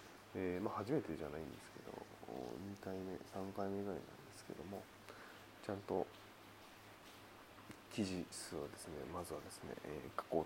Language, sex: Japanese, male